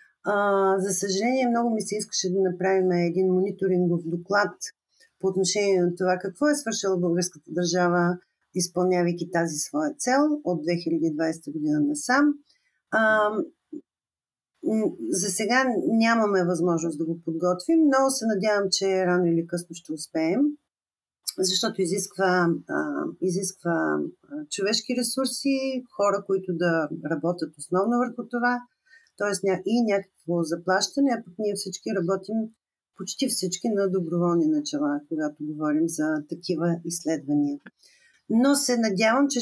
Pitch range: 180-260 Hz